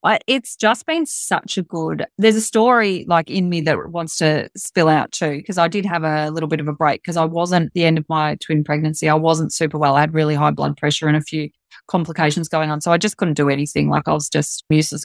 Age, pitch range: 20-39, 155-185 Hz